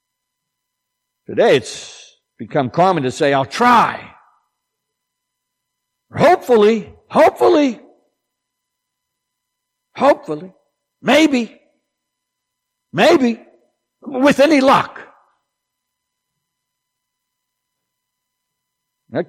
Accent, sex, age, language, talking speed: American, male, 60-79, English, 55 wpm